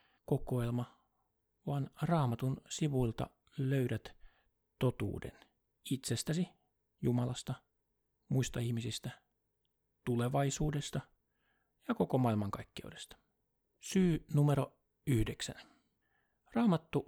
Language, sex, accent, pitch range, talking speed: Finnish, male, native, 115-140 Hz, 60 wpm